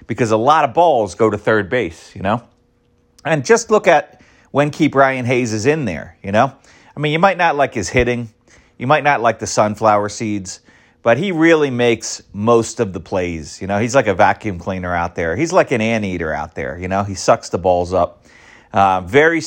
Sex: male